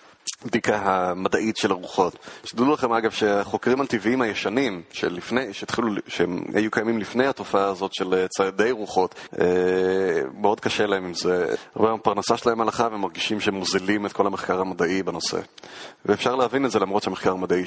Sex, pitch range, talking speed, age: male, 100-125 Hz, 145 wpm, 30-49